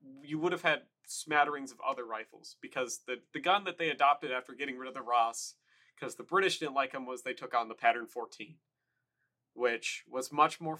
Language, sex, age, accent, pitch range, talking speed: English, male, 30-49, American, 115-140 Hz, 210 wpm